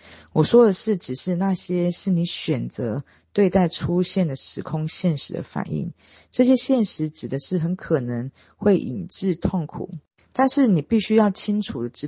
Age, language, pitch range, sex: 40-59, Chinese, 145-195 Hz, female